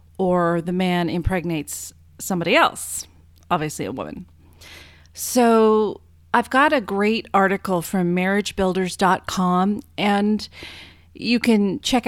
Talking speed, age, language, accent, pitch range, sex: 105 wpm, 30-49, English, American, 160-210 Hz, female